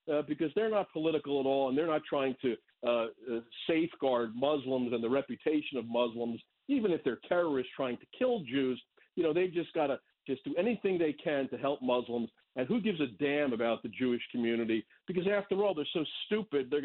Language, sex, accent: English, male, American